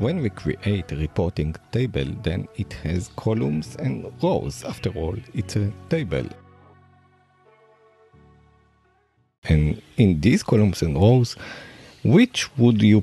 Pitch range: 80-105 Hz